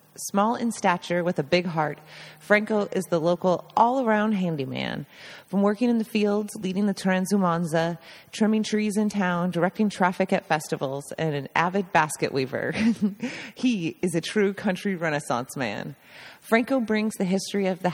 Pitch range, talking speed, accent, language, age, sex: 155-195 Hz, 155 wpm, American, English, 30-49, female